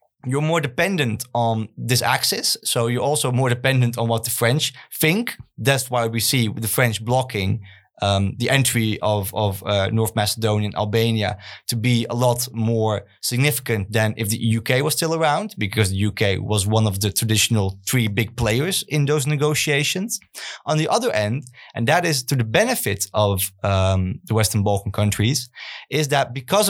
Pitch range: 110-135 Hz